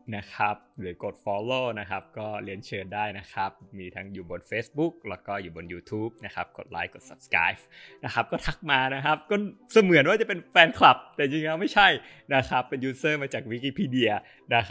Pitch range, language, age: 95-130 Hz, Thai, 20-39